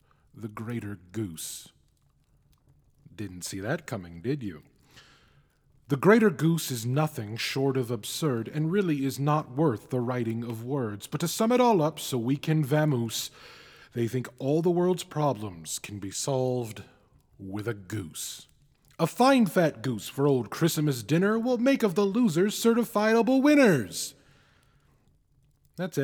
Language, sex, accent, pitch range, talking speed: English, male, American, 115-165 Hz, 150 wpm